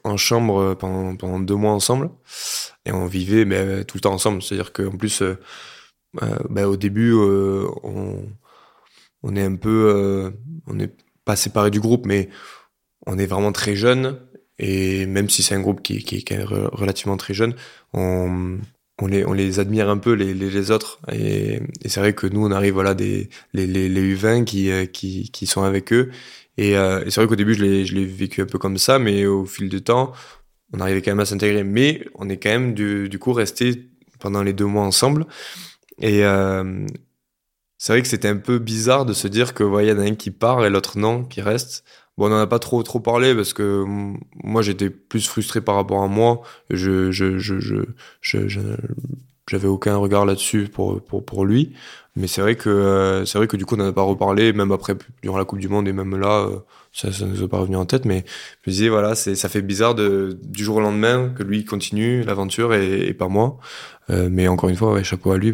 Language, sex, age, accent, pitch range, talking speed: French, male, 20-39, French, 95-115 Hz, 220 wpm